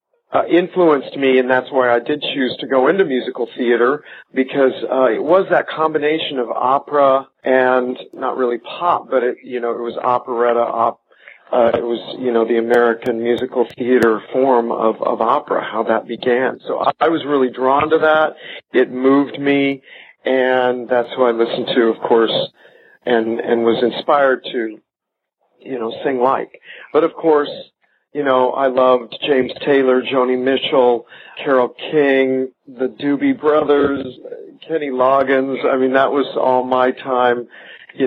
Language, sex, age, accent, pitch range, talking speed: English, male, 50-69, American, 120-135 Hz, 165 wpm